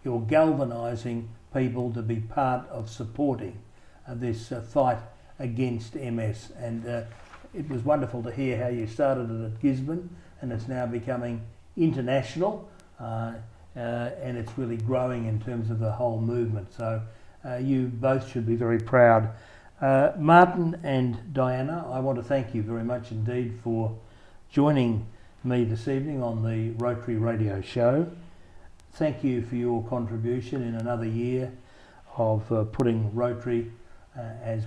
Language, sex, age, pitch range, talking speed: English, male, 60-79, 115-130 Hz, 150 wpm